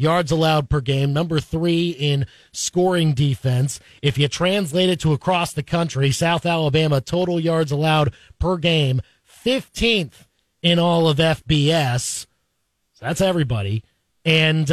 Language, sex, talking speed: English, male, 135 wpm